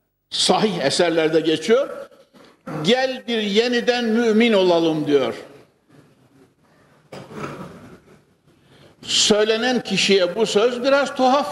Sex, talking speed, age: male, 80 wpm, 60-79